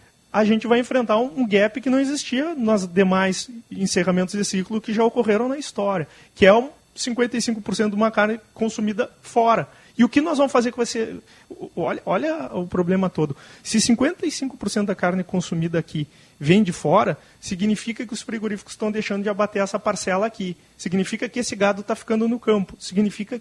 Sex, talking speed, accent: male, 180 wpm, Brazilian